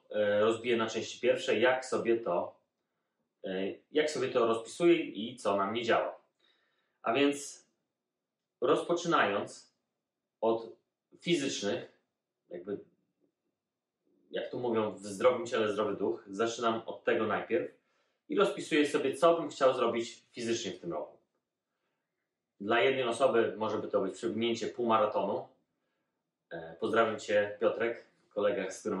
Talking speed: 125 wpm